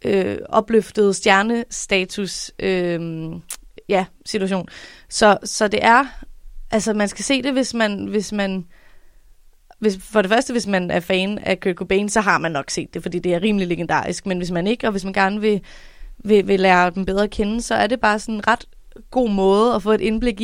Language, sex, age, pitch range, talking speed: Danish, female, 20-39, 185-215 Hz, 205 wpm